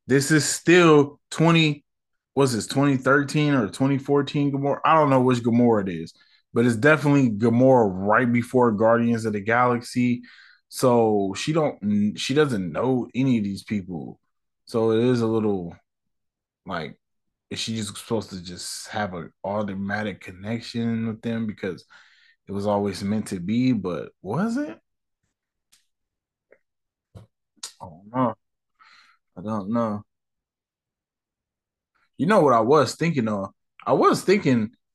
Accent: American